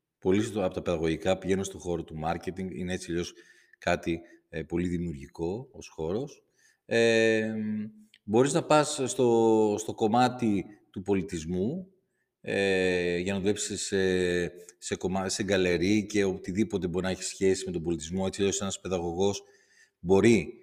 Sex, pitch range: male, 95-140 Hz